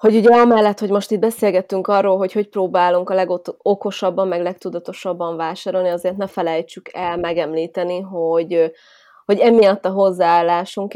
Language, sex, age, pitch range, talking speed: Hungarian, female, 20-39, 175-195 Hz, 140 wpm